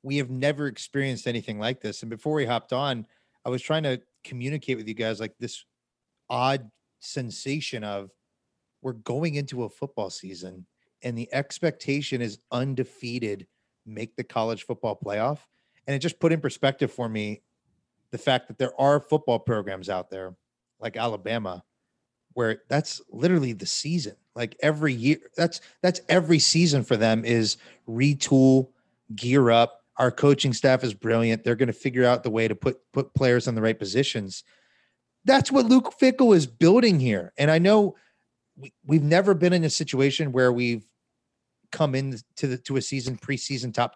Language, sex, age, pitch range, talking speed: English, male, 30-49, 115-140 Hz, 170 wpm